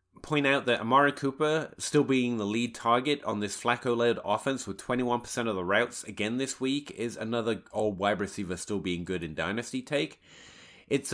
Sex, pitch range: male, 105-155 Hz